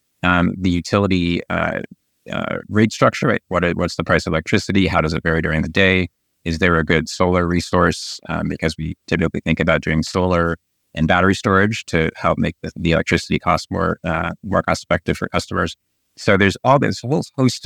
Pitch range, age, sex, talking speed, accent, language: 85-95 Hz, 30-49, male, 195 wpm, American, English